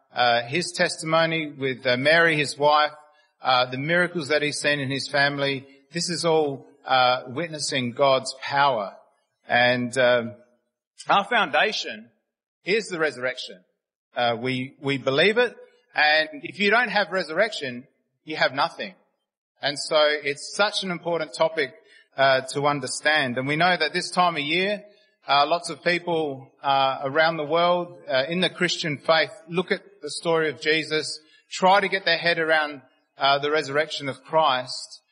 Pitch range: 130-170 Hz